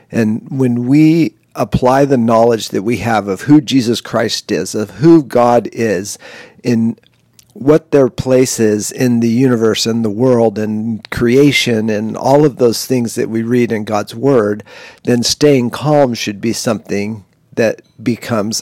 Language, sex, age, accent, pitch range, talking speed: English, male, 50-69, American, 110-130 Hz, 160 wpm